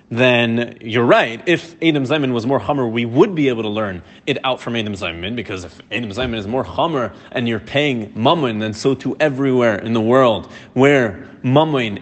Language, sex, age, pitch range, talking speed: English, male, 30-49, 120-155 Hz, 200 wpm